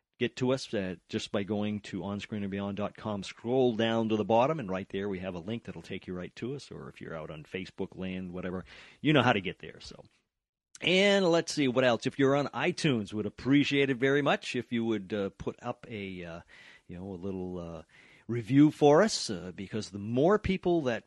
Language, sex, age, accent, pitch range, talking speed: English, male, 40-59, American, 100-135 Hz, 220 wpm